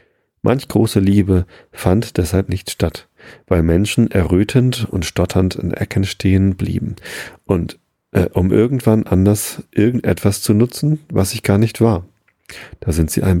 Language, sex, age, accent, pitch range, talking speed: German, male, 40-59, German, 90-115 Hz, 150 wpm